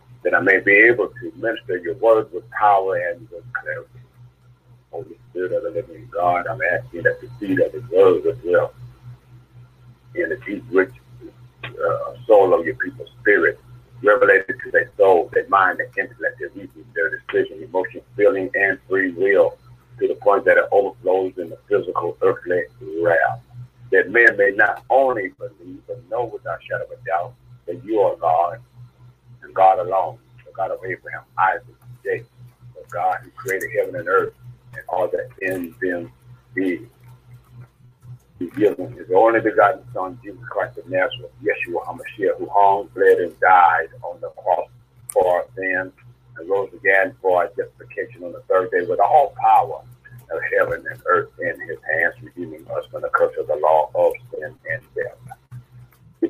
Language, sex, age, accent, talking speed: English, male, 50-69, American, 175 wpm